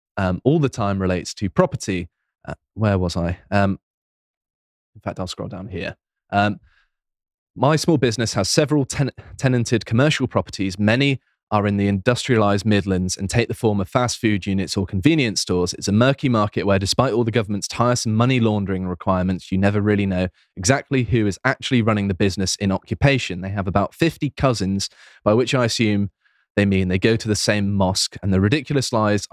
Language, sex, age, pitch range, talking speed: English, male, 20-39, 95-120 Hz, 185 wpm